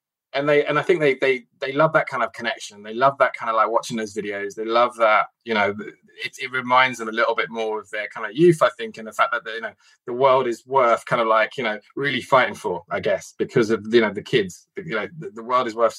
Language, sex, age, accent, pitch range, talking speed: English, male, 20-39, British, 110-140 Hz, 285 wpm